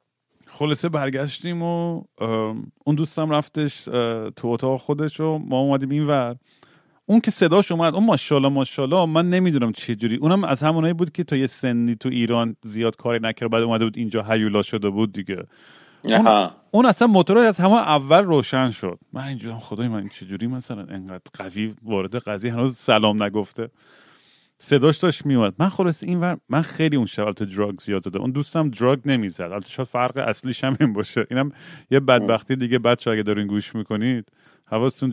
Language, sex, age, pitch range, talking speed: Persian, male, 30-49, 115-150 Hz, 165 wpm